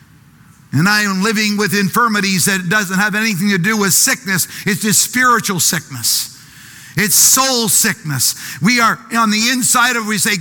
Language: English